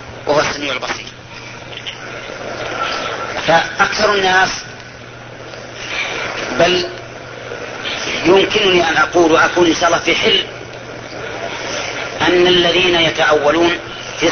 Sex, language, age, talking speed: female, Arabic, 40-59, 80 wpm